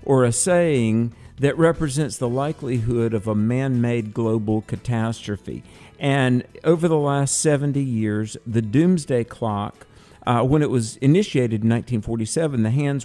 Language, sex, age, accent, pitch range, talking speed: English, male, 50-69, American, 110-140 Hz, 140 wpm